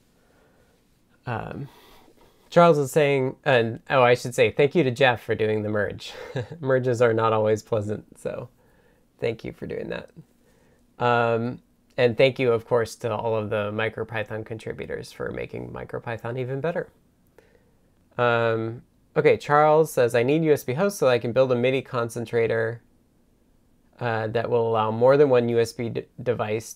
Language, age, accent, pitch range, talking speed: English, 20-39, American, 110-145 Hz, 150 wpm